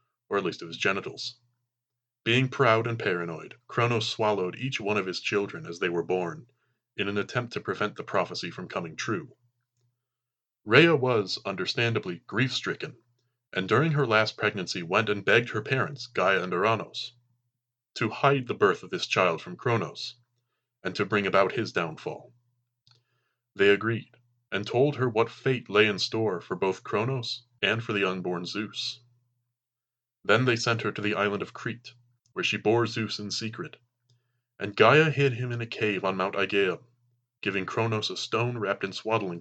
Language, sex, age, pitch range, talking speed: English, male, 30-49, 110-125 Hz, 175 wpm